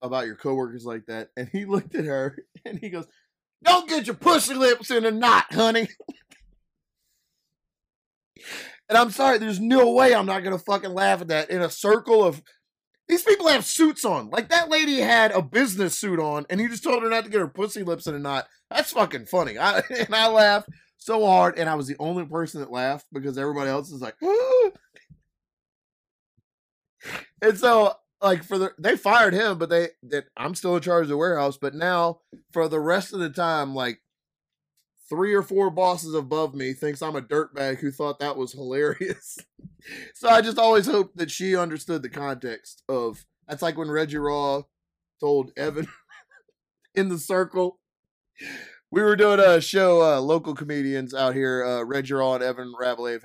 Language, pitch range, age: English, 140-215 Hz, 30-49